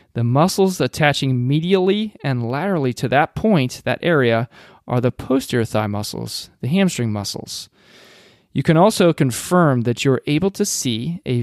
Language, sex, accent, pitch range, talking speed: English, male, American, 120-150 Hz, 150 wpm